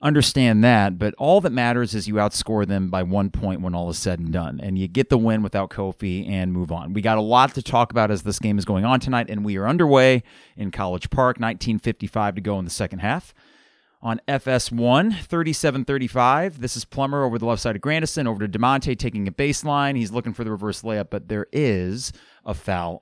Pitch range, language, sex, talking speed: 100-130 Hz, English, male, 225 wpm